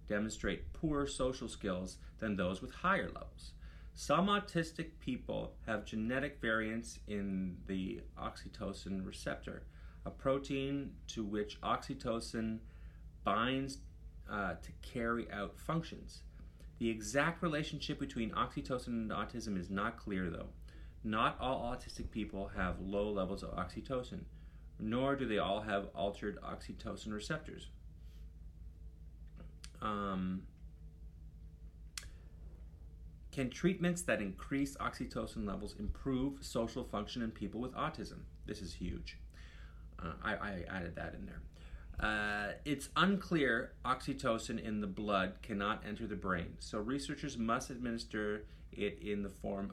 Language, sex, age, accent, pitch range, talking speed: English, male, 30-49, American, 85-115 Hz, 120 wpm